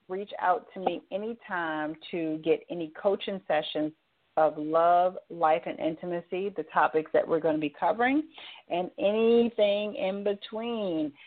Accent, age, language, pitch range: American, 40-59, English, 165-230 Hz